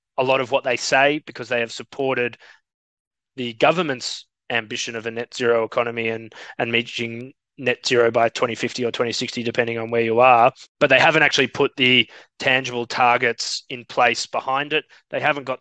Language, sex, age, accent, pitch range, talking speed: English, male, 20-39, Australian, 120-130 Hz, 180 wpm